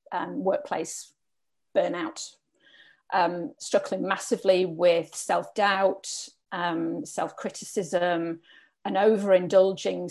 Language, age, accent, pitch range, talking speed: English, 40-59, British, 190-225 Hz, 85 wpm